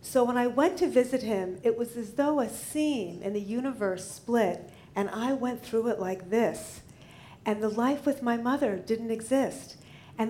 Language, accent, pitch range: English, American, 195-250 Hz